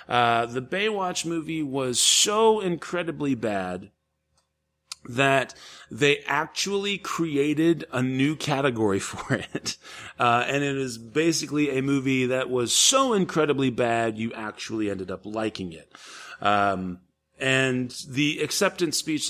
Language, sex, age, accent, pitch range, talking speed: English, male, 30-49, American, 105-140 Hz, 125 wpm